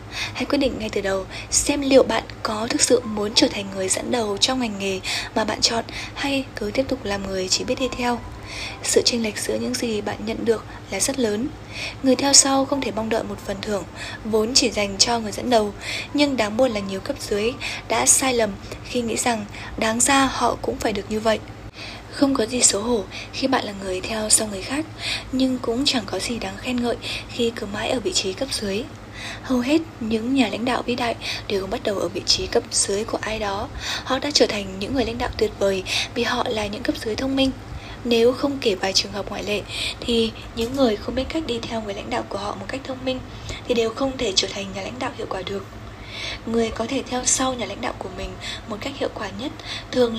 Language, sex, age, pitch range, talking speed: Vietnamese, female, 10-29, 215-260 Hz, 245 wpm